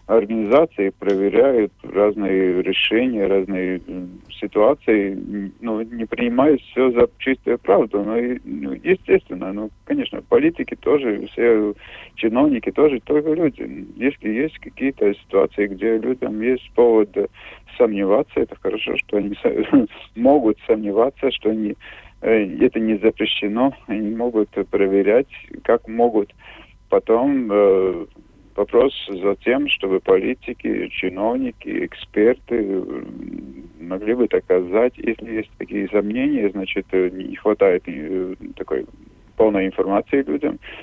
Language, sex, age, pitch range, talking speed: Russian, male, 40-59, 100-150 Hz, 105 wpm